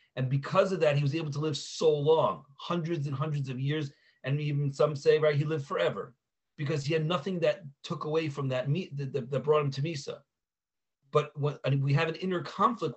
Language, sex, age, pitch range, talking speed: English, male, 40-59, 125-160 Hz, 205 wpm